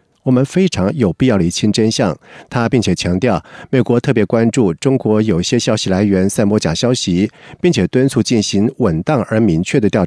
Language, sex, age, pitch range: Chinese, male, 50-69, 105-140 Hz